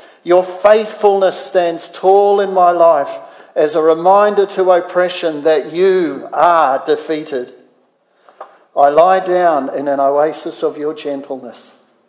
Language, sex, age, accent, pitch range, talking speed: English, male, 50-69, Australian, 140-175 Hz, 125 wpm